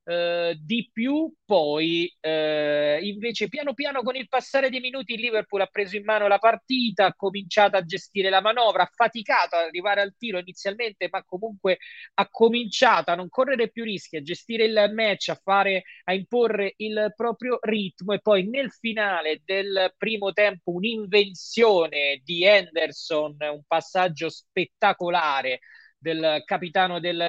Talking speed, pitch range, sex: 150 wpm, 165-205 Hz, male